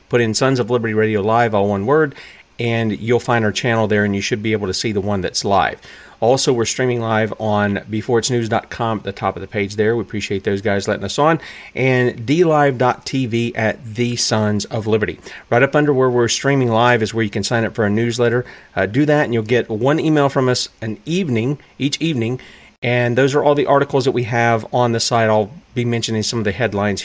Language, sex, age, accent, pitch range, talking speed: English, male, 40-59, American, 110-130 Hz, 230 wpm